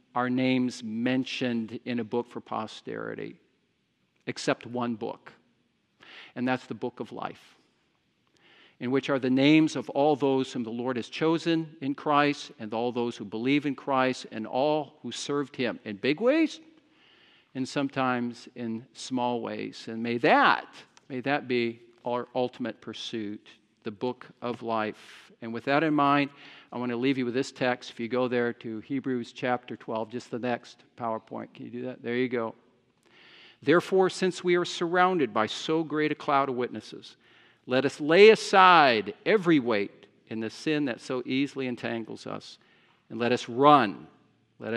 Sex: male